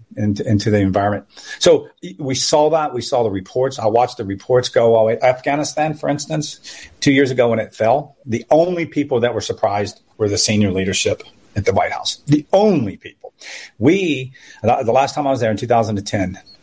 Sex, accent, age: male, American, 40-59